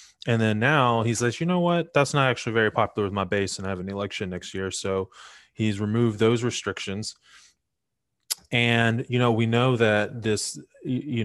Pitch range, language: 100-115 Hz, English